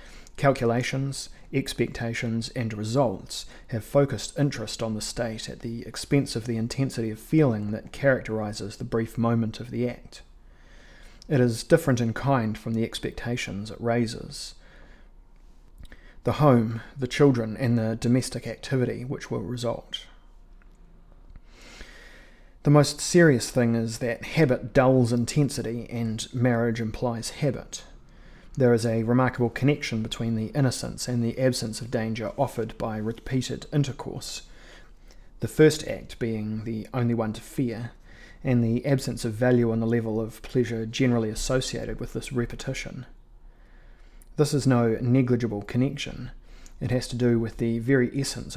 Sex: male